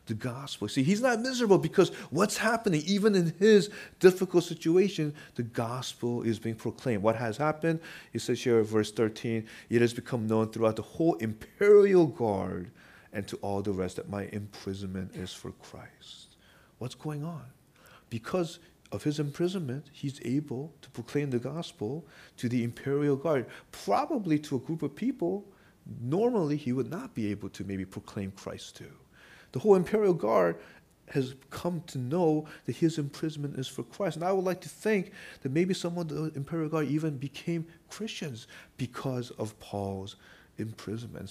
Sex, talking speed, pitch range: male, 170 wpm, 115-180 Hz